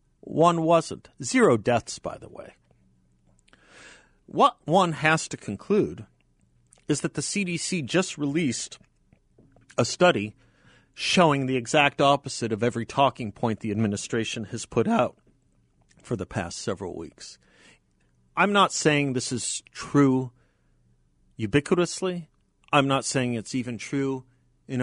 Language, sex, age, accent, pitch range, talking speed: English, male, 50-69, American, 95-140 Hz, 125 wpm